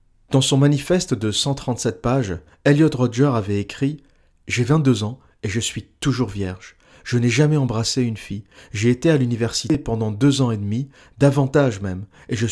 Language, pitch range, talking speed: French, 105-135 Hz, 180 wpm